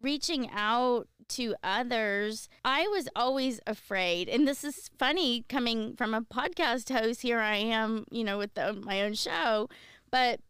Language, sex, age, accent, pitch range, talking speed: English, female, 20-39, American, 205-250 Hz, 155 wpm